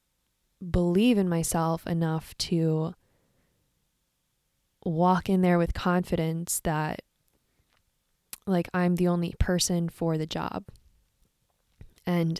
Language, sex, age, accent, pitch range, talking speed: English, female, 10-29, American, 170-195 Hz, 95 wpm